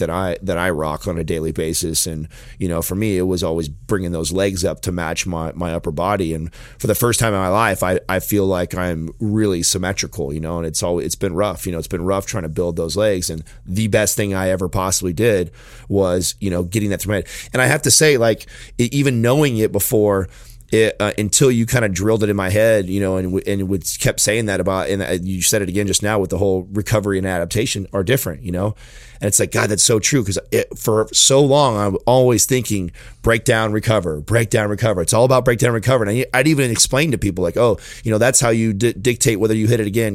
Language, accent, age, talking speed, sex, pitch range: English, American, 30-49, 255 wpm, male, 95-115 Hz